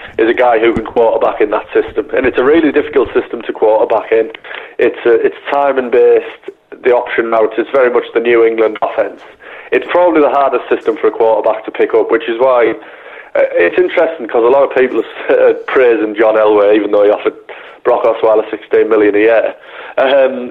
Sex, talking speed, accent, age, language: male, 205 wpm, British, 30-49, English